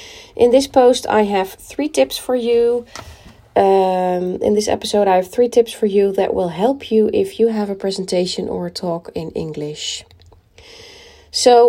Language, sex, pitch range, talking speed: English, female, 185-240 Hz, 175 wpm